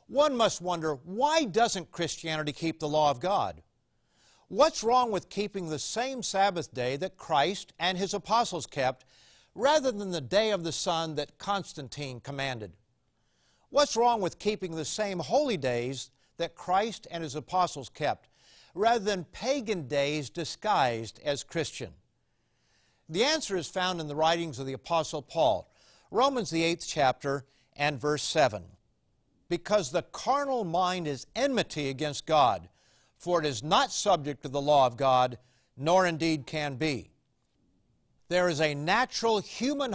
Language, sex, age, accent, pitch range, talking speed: English, male, 50-69, American, 145-200 Hz, 150 wpm